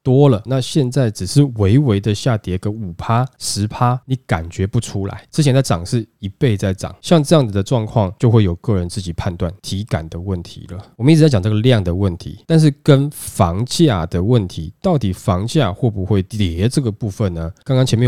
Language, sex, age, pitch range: Chinese, male, 20-39, 95-125 Hz